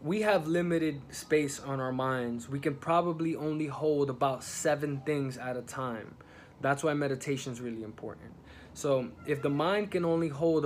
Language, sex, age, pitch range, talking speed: English, male, 20-39, 130-155 Hz, 175 wpm